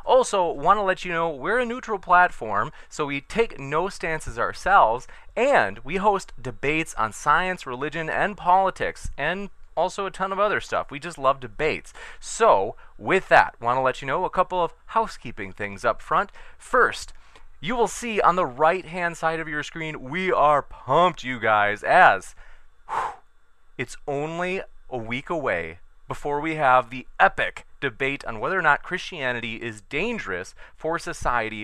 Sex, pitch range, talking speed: male, 125-185 Hz, 170 wpm